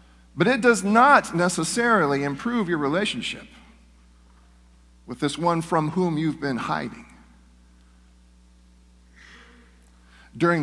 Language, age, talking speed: English, 50-69, 95 wpm